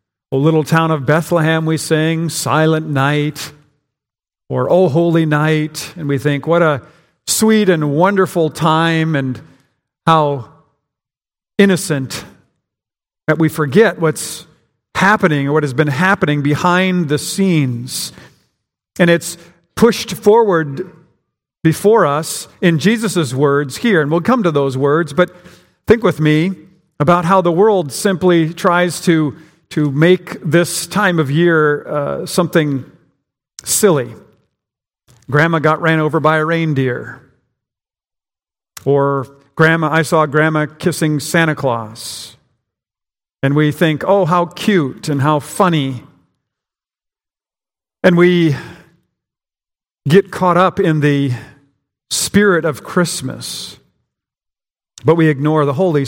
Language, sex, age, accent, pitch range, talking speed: English, male, 50-69, American, 140-175 Hz, 120 wpm